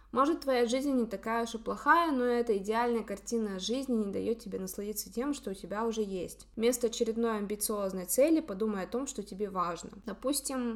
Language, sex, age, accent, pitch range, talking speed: Russian, female, 20-39, native, 195-240 Hz, 190 wpm